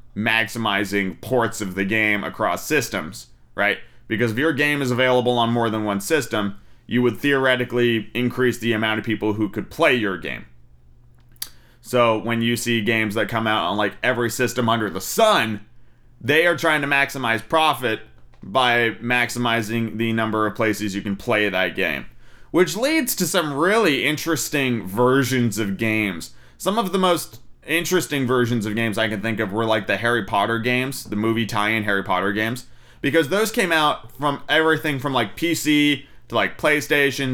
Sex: male